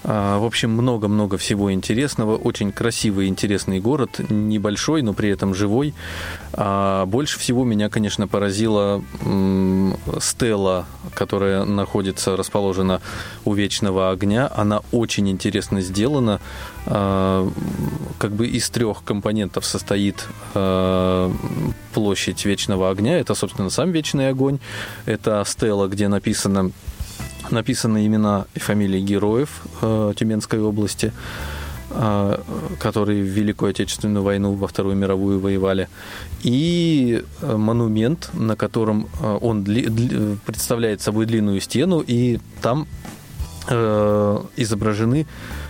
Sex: male